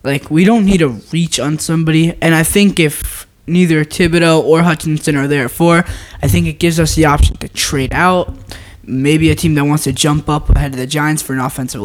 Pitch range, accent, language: 130-165 Hz, American, English